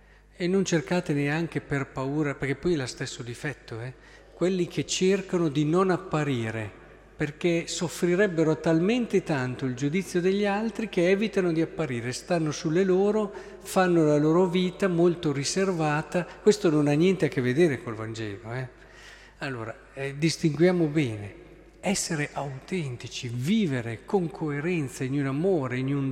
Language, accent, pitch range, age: Italian, native, 125-175 Hz, 50-69